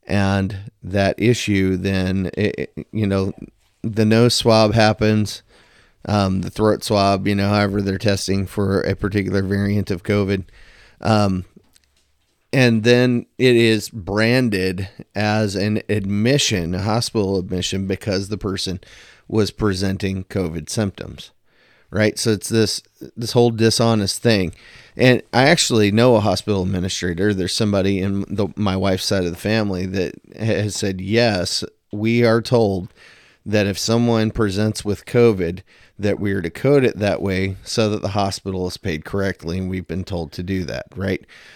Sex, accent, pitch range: male, American, 95-110 Hz